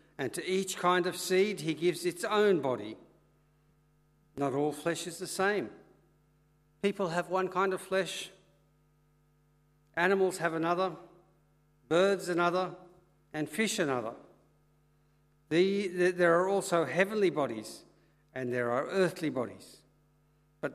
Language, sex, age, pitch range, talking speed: English, male, 60-79, 150-180 Hz, 125 wpm